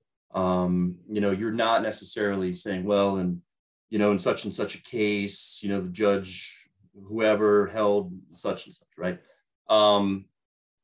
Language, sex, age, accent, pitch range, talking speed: English, male, 30-49, American, 90-110 Hz, 155 wpm